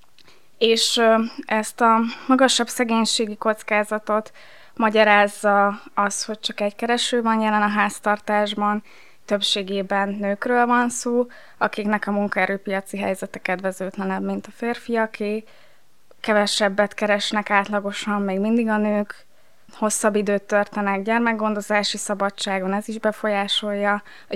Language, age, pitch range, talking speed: Hungarian, 20-39, 205-225 Hz, 110 wpm